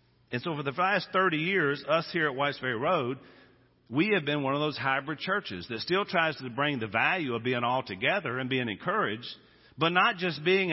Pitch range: 110-150 Hz